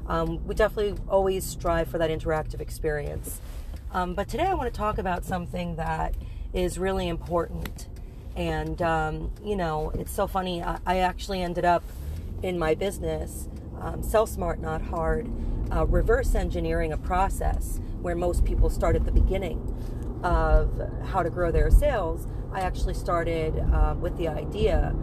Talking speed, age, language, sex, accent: 160 wpm, 40-59, English, female, American